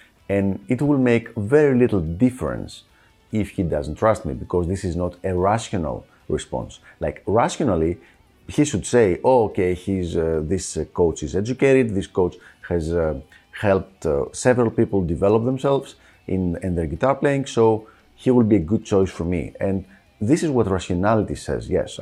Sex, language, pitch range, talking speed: male, English, 90-120 Hz, 170 wpm